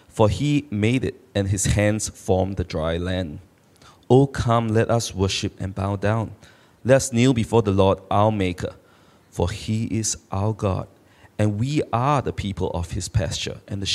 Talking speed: 180 wpm